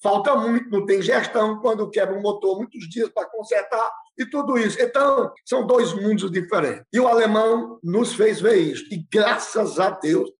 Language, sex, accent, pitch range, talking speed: Portuguese, male, Brazilian, 185-255 Hz, 190 wpm